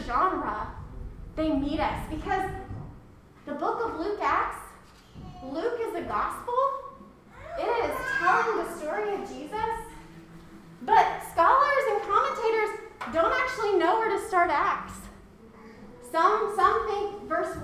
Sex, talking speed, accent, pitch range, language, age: female, 115 wpm, American, 240-395 Hz, English, 30-49